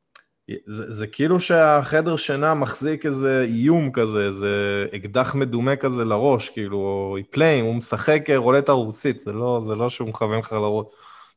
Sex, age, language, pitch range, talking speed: male, 20-39, Hebrew, 105-135 Hz, 160 wpm